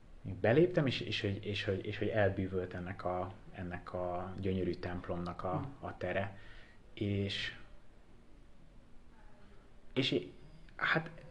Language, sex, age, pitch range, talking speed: Hungarian, male, 30-49, 95-115 Hz, 80 wpm